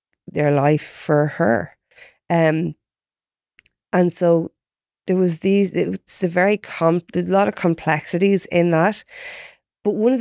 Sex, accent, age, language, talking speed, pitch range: female, Irish, 20-39, English, 140 wpm, 155-190 Hz